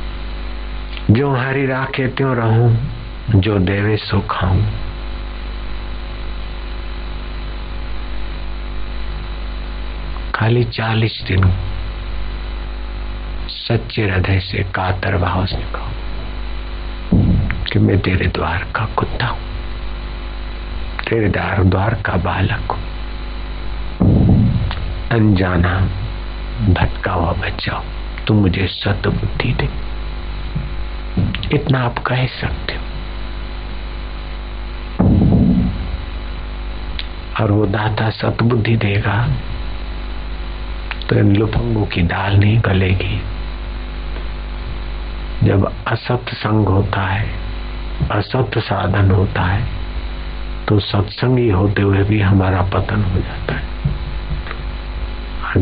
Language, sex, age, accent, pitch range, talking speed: Hindi, male, 60-79, native, 85-110 Hz, 80 wpm